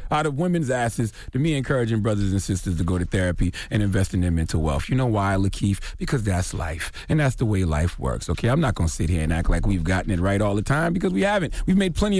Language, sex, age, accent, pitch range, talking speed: English, male, 40-59, American, 95-150 Hz, 275 wpm